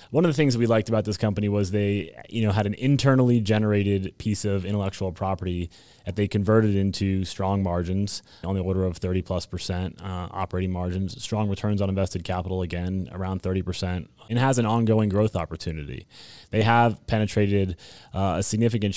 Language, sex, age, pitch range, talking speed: English, male, 20-39, 95-105 Hz, 185 wpm